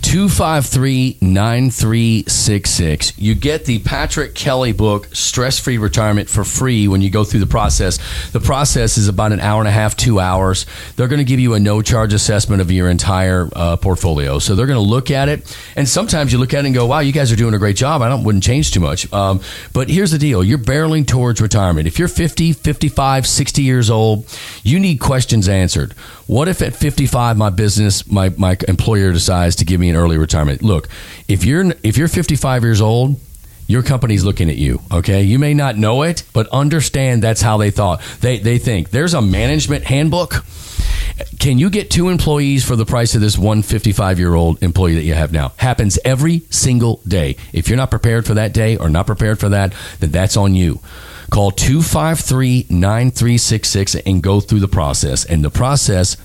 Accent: American